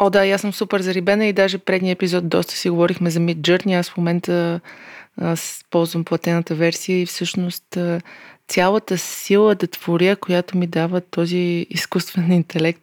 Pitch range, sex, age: 170-190 Hz, female, 20-39